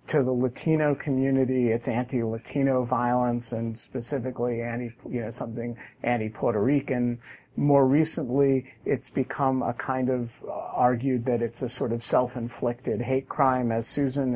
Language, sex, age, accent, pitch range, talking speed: English, male, 50-69, American, 120-140 Hz, 140 wpm